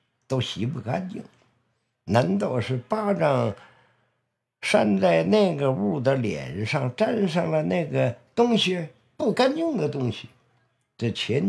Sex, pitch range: male, 125-210 Hz